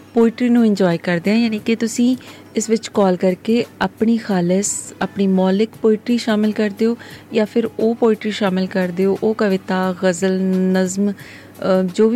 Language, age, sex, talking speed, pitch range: Punjabi, 30-49, female, 160 wpm, 185-220 Hz